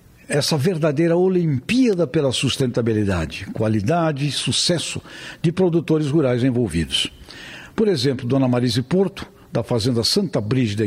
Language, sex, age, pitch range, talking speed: English, male, 60-79, 125-160 Hz, 115 wpm